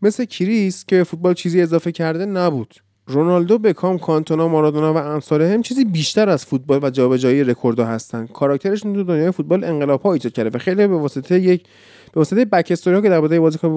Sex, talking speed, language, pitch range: male, 185 wpm, Persian, 150-195 Hz